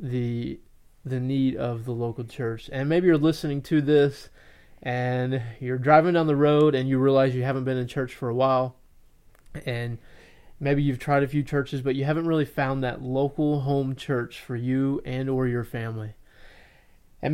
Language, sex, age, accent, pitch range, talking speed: English, male, 20-39, American, 125-145 Hz, 185 wpm